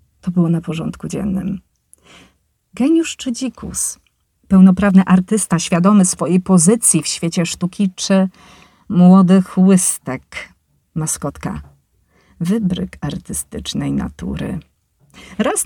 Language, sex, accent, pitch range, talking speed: Polish, female, native, 175-230 Hz, 90 wpm